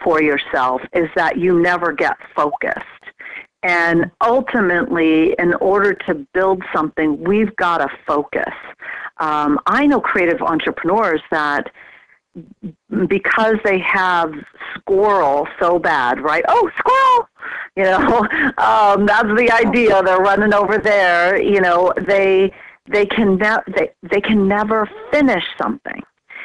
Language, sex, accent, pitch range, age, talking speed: English, female, American, 160-215 Hz, 50-69, 125 wpm